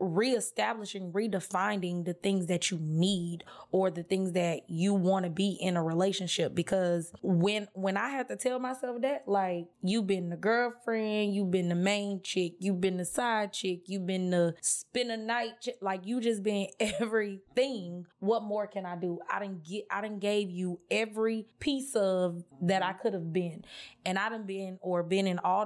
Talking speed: 190 wpm